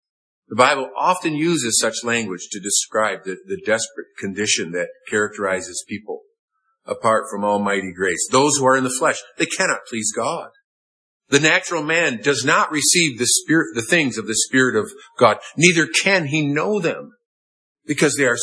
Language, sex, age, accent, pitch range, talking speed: English, male, 50-69, American, 115-180 Hz, 170 wpm